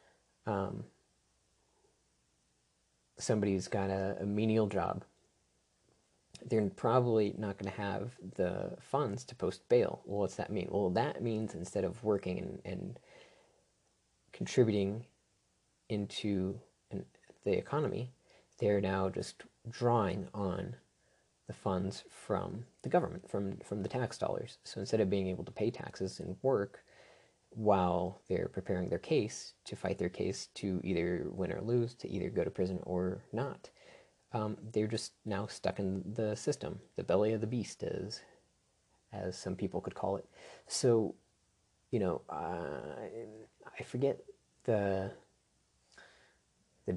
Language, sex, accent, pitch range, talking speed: English, male, American, 95-115 Hz, 140 wpm